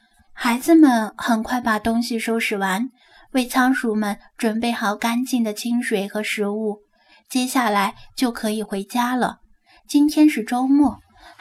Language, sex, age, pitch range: Chinese, female, 10-29, 215-275 Hz